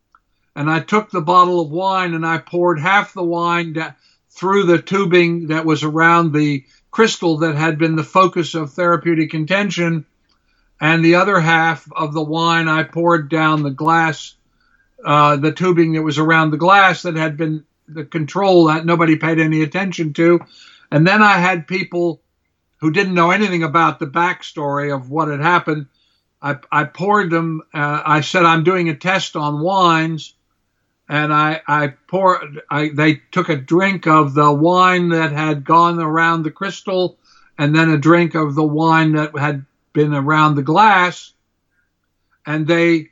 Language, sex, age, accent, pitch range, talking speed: English, male, 60-79, American, 155-175 Hz, 170 wpm